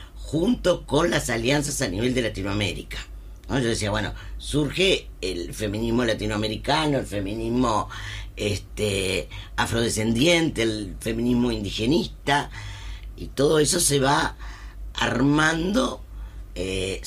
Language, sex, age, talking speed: Spanish, female, 50-69, 105 wpm